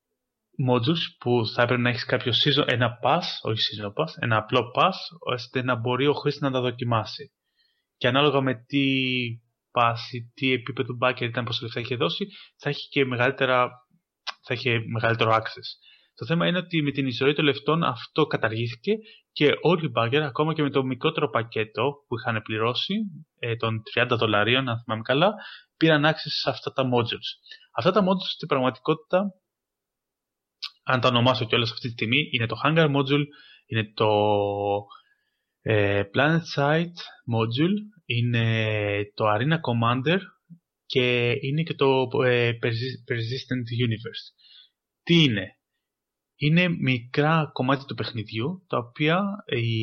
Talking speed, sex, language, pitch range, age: 150 wpm, male, Greek, 115-150 Hz, 20-39